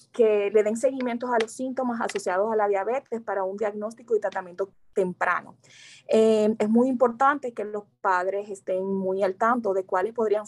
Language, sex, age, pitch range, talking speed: Spanish, female, 20-39, 195-225 Hz, 180 wpm